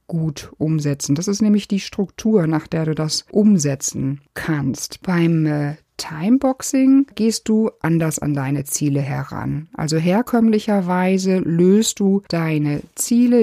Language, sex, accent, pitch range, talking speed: German, female, German, 150-195 Hz, 130 wpm